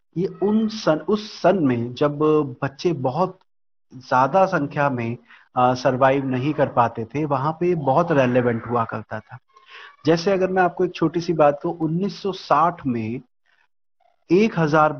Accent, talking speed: native, 145 wpm